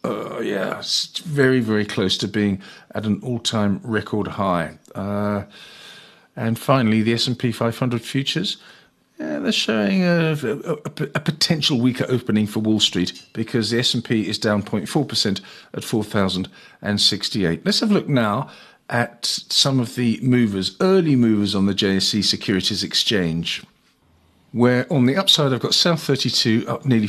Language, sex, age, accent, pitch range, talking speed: English, male, 50-69, British, 105-135 Hz, 145 wpm